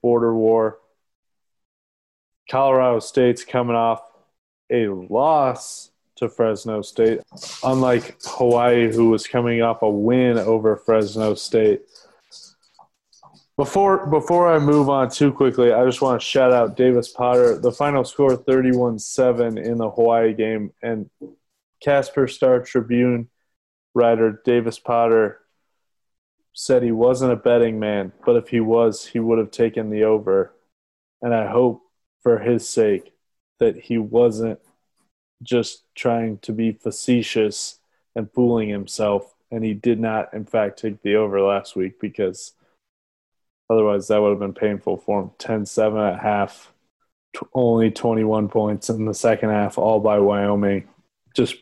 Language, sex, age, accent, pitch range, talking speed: English, male, 20-39, American, 105-125 Hz, 140 wpm